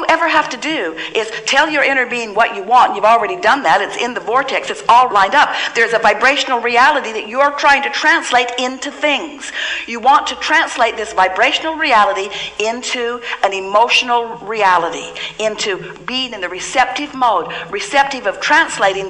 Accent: American